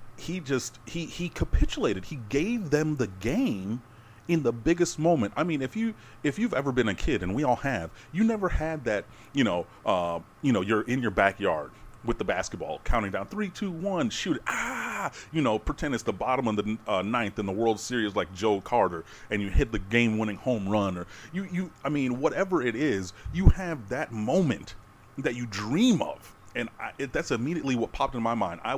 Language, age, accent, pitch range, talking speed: English, 30-49, American, 105-140 Hz, 210 wpm